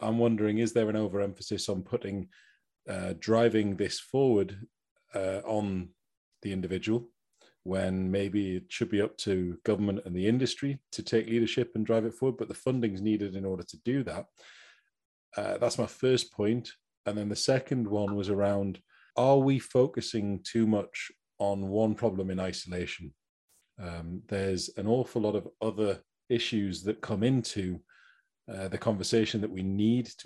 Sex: male